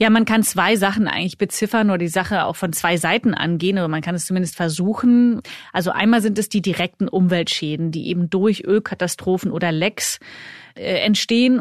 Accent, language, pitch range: German, German, 175-210 Hz